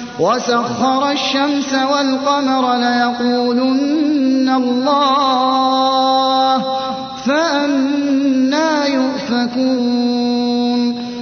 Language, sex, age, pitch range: Arabic, male, 30-49, 245-280 Hz